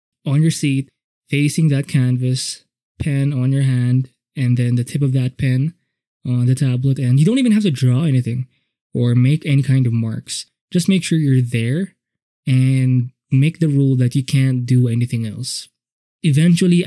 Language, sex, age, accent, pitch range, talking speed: English, male, 20-39, Filipino, 125-150 Hz, 180 wpm